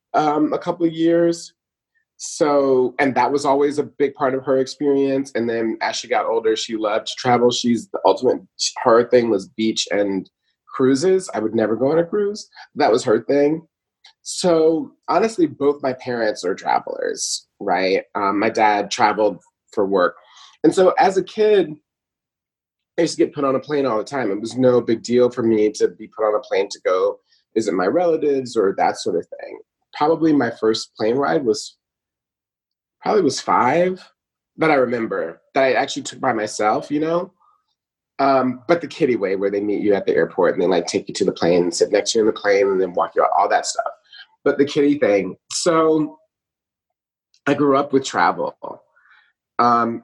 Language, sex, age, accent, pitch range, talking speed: English, male, 30-49, American, 125-185 Hz, 200 wpm